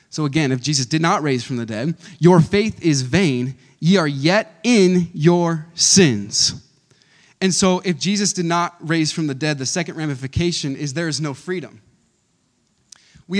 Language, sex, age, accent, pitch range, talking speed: English, male, 20-39, American, 145-200 Hz, 175 wpm